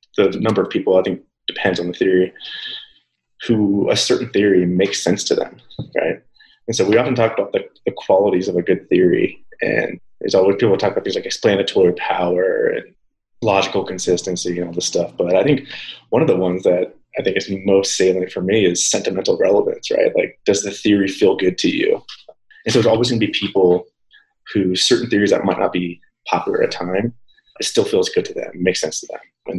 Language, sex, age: English, male, 20-39